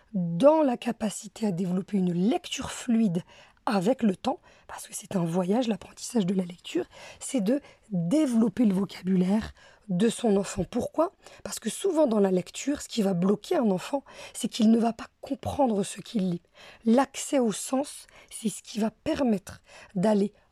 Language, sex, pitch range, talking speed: French, female, 195-250 Hz, 175 wpm